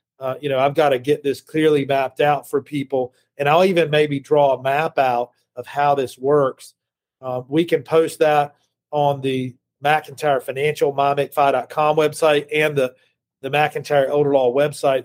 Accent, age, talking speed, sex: American, 40-59, 170 wpm, male